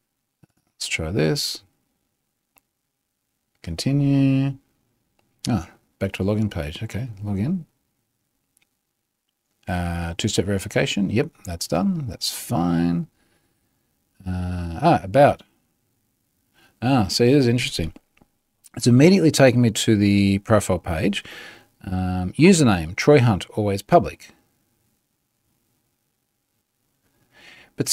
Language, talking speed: English, 95 wpm